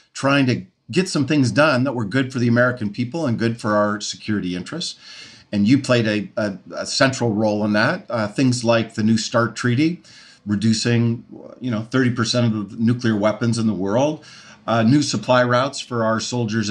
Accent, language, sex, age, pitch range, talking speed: American, English, male, 50-69, 105-125 Hz, 190 wpm